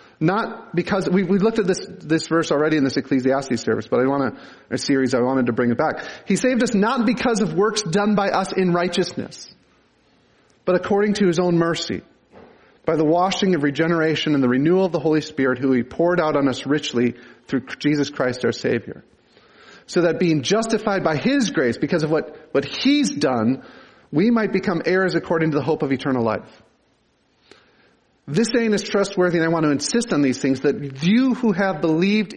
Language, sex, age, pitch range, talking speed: English, male, 40-59, 155-210 Hz, 200 wpm